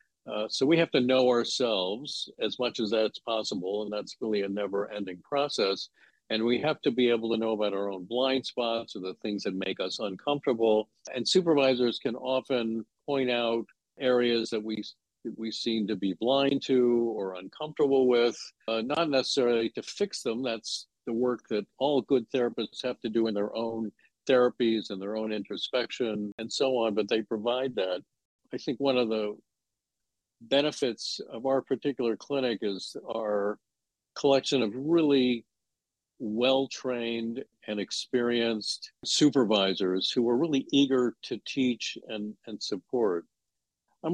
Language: English